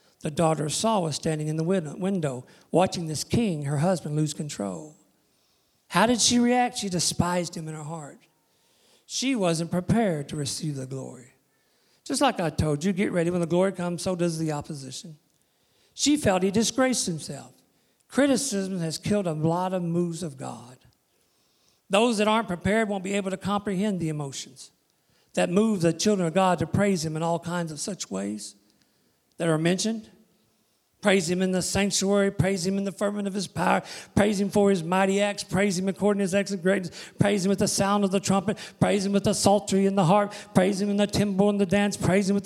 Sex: male